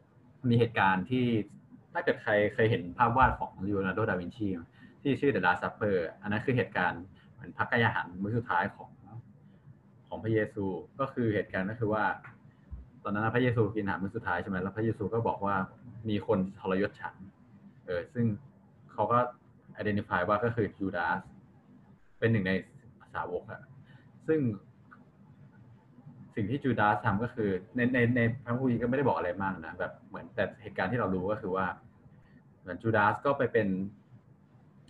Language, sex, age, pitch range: Thai, male, 20-39, 100-120 Hz